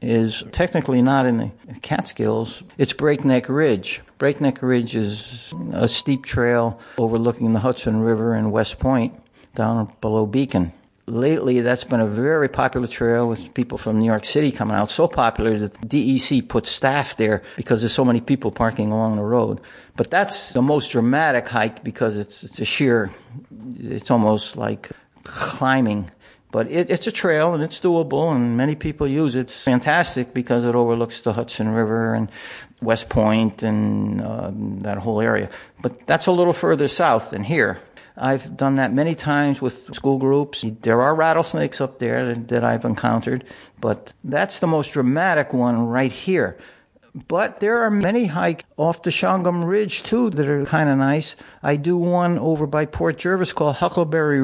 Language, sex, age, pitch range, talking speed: English, male, 60-79, 115-150 Hz, 175 wpm